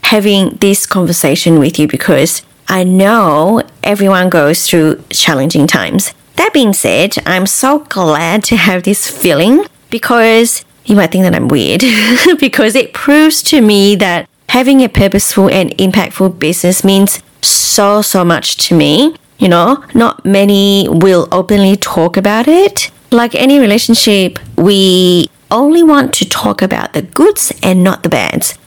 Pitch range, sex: 180-235 Hz, female